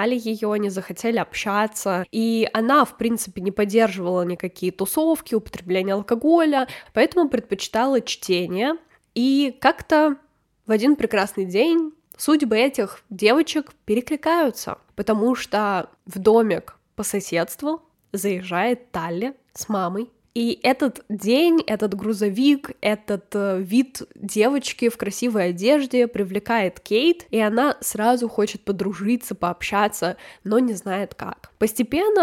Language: Russian